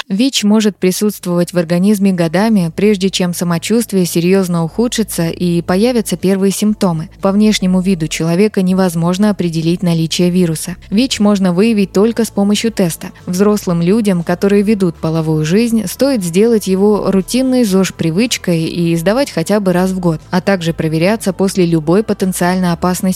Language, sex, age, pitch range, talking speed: Russian, female, 20-39, 170-205 Hz, 145 wpm